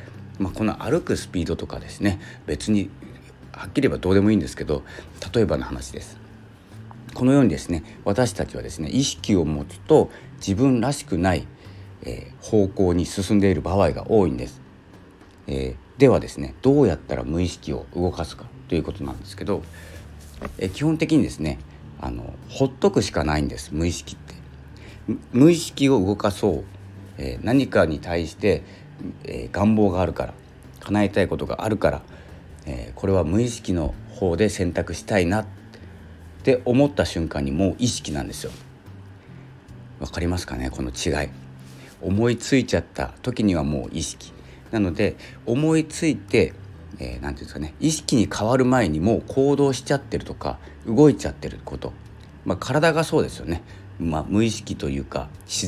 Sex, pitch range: male, 75-110 Hz